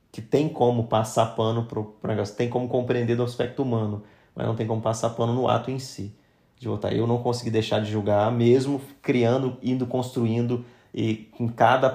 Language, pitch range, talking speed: Portuguese, 110-125 Hz, 195 wpm